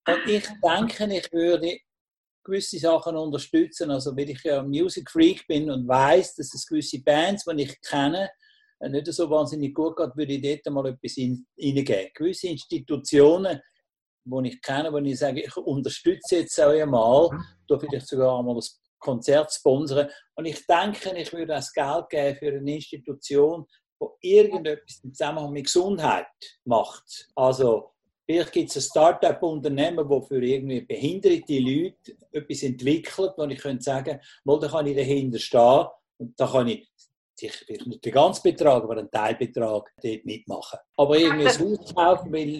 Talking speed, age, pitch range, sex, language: 165 wpm, 60-79, 140-170 Hz, male, English